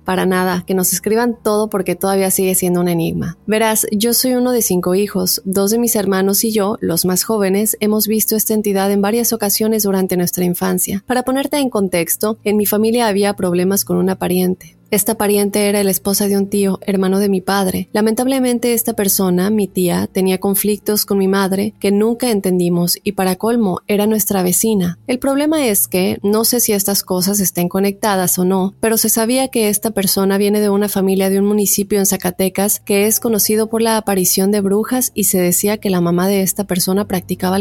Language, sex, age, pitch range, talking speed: Spanish, female, 20-39, 185-215 Hz, 205 wpm